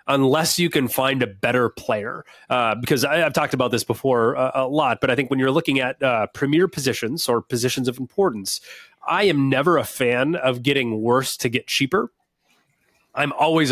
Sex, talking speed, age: male, 195 wpm, 30-49